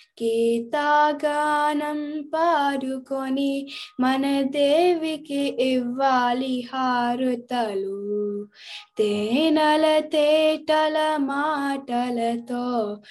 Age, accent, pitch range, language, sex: 20-39, native, 265-335 Hz, Telugu, female